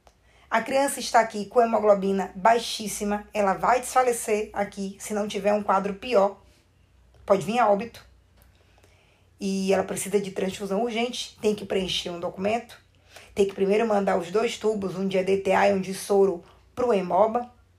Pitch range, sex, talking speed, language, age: 185-220 Hz, female, 165 wpm, Portuguese, 20-39